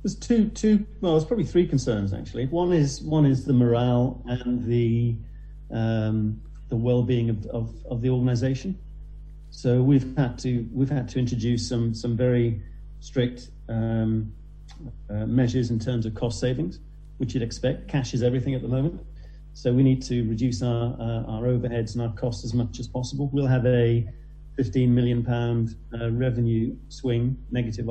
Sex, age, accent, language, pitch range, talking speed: male, 40-59, British, English, 115-130 Hz, 170 wpm